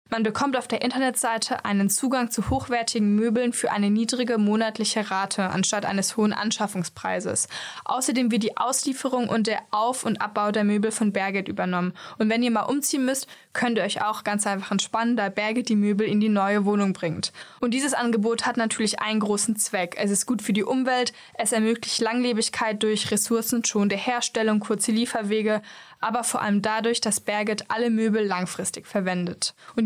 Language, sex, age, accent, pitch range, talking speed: German, female, 10-29, German, 210-240 Hz, 175 wpm